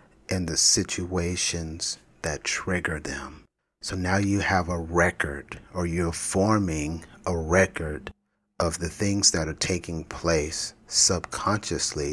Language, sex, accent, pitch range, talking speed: English, male, American, 80-95 Hz, 125 wpm